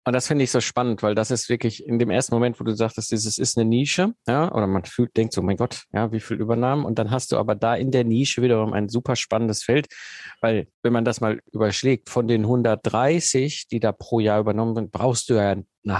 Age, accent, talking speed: 50-69, German, 250 wpm